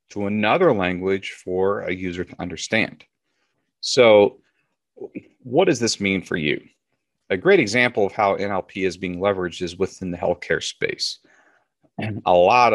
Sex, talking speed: male, 150 wpm